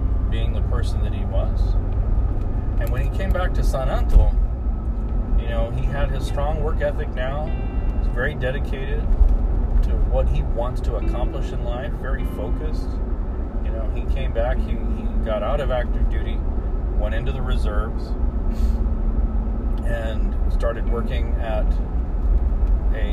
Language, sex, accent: English, male, American